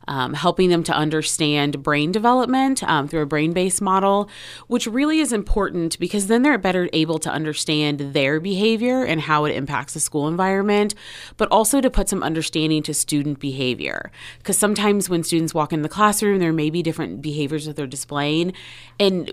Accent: American